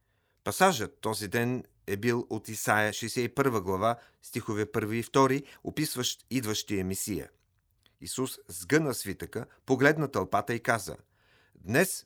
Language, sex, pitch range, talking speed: Bulgarian, male, 100-130 Hz, 120 wpm